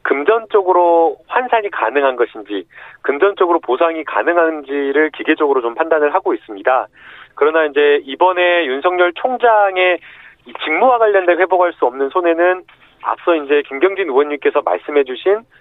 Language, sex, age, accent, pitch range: Korean, male, 30-49, native, 150-230 Hz